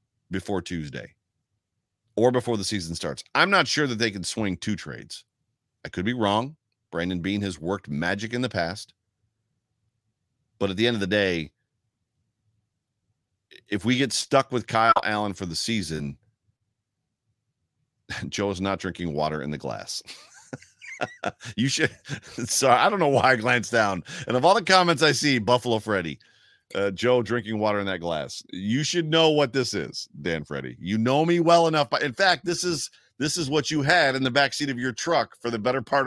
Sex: male